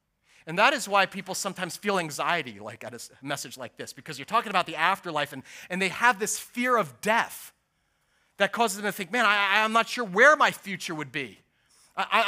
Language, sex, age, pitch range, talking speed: English, male, 30-49, 180-245 Hz, 215 wpm